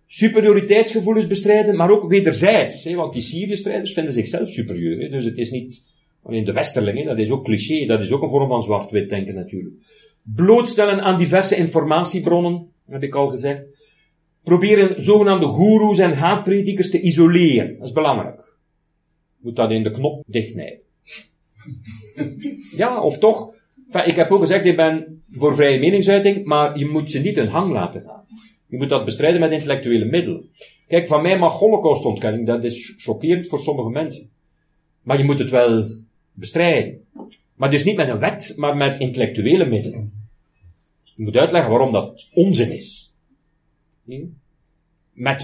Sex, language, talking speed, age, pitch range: male, Dutch, 160 wpm, 40-59, 120-175 Hz